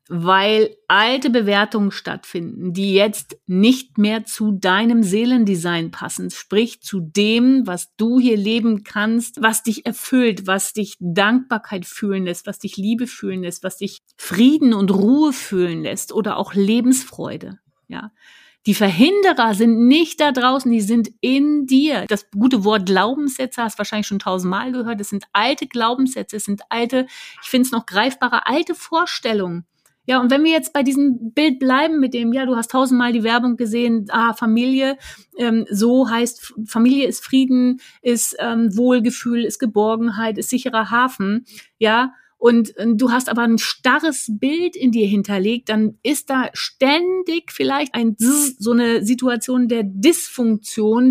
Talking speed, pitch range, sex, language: 160 wpm, 210-255 Hz, female, German